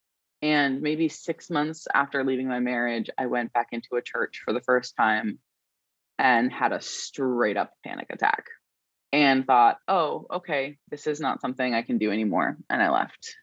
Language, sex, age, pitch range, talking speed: English, female, 20-39, 115-140 Hz, 180 wpm